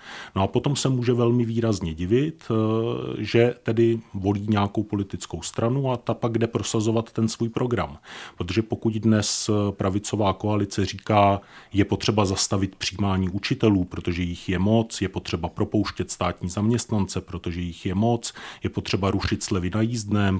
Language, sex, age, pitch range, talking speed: Czech, male, 30-49, 90-115 Hz, 155 wpm